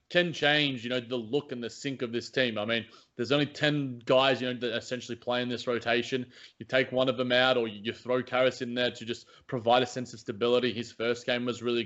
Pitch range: 115-130 Hz